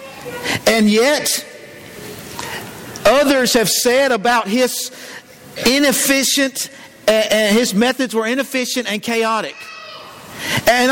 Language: English